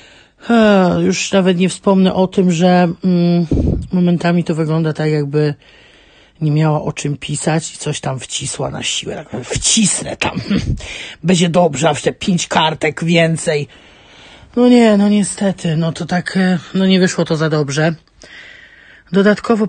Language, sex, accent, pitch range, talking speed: Polish, male, native, 160-195 Hz, 145 wpm